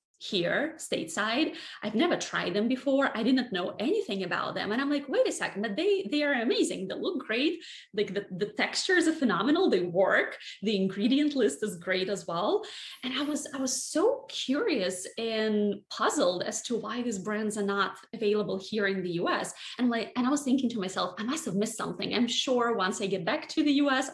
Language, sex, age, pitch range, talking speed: English, female, 20-39, 205-275 Hz, 210 wpm